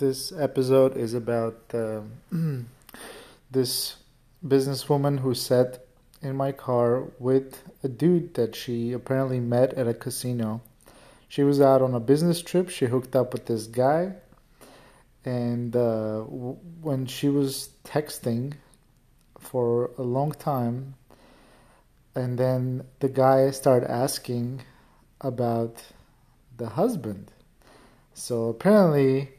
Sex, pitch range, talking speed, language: male, 120-135 Hz, 115 wpm, English